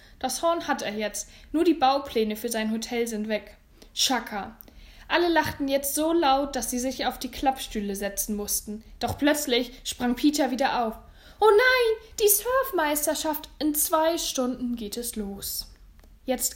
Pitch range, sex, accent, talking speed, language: 225-285 Hz, female, German, 160 wpm, German